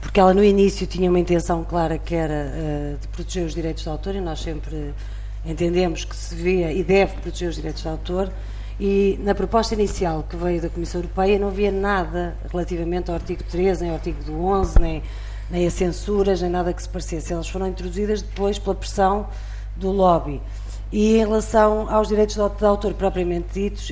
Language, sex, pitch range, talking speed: Portuguese, female, 165-200 Hz, 190 wpm